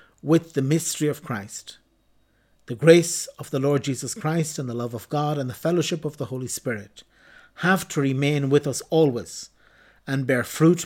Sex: male